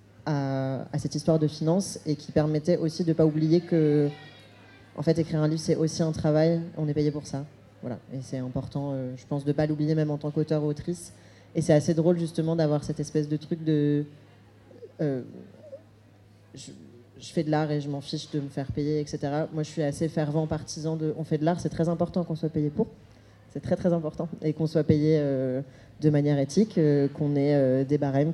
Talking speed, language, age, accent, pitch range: 230 wpm, French, 20-39, French, 140-160 Hz